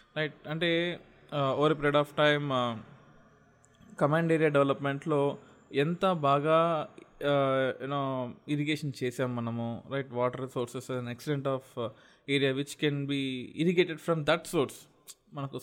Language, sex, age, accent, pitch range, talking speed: Telugu, male, 20-39, native, 125-145 Hz, 110 wpm